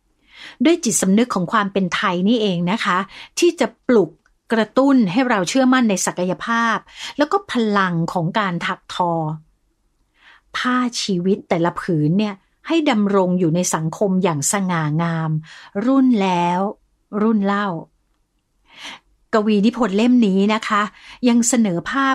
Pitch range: 180-230 Hz